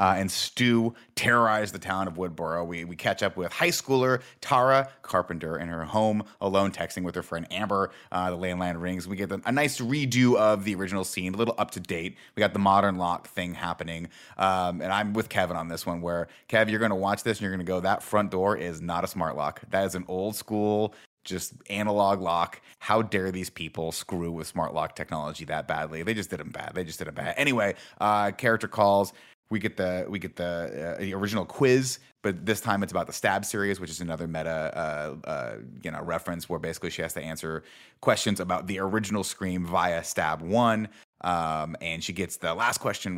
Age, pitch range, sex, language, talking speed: 30-49, 85-105 Hz, male, English, 225 wpm